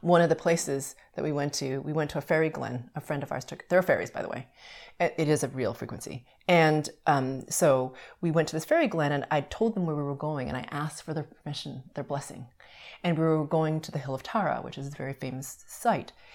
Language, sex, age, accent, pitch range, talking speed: English, female, 30-49, American, 150-230 Hz, 255 wpm